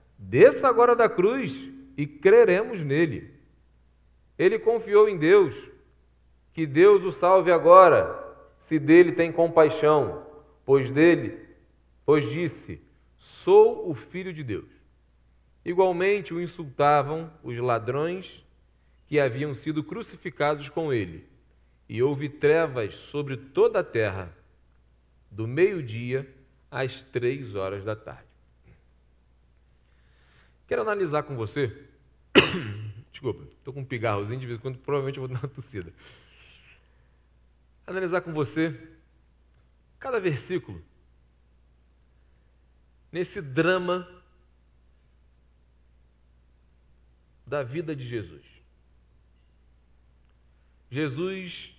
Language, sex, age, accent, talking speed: Portuguese, male, 40-59, Brazilian, 95 wpm